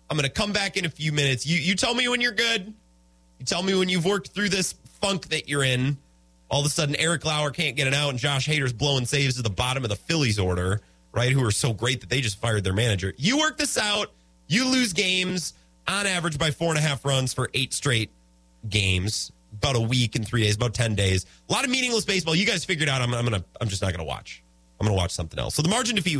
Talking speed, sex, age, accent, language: 260 wpm, male, 30-49, American, English